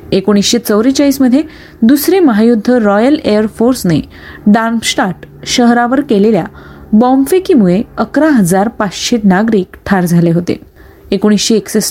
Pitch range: 200-260 Hz